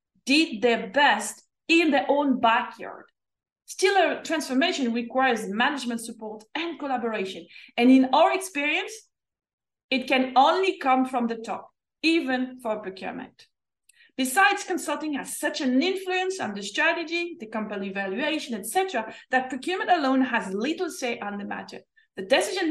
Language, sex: English, female